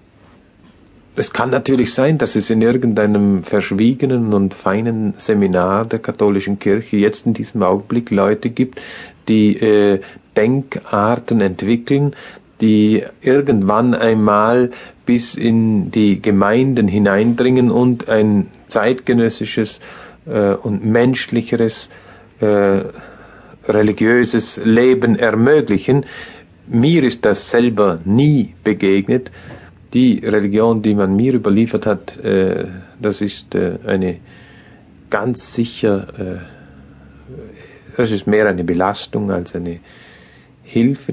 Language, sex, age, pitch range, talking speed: German, male, 50-69, 95-115 Hz, 105 wpm